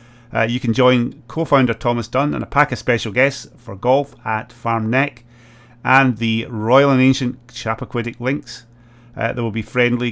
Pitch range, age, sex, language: 110-130 Hz, 30-49, male, English